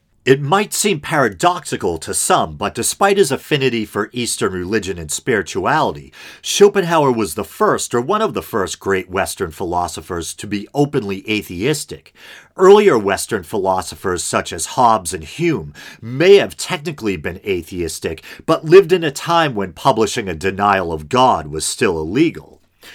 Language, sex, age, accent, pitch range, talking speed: English, male, 50-69, American, 95-150 Hz, 150 wpm